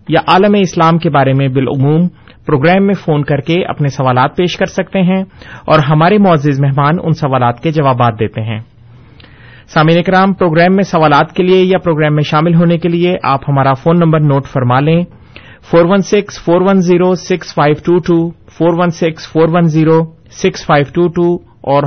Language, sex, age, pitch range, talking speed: Urdu, male, 30-49, 140-175 Hz, 145 wpm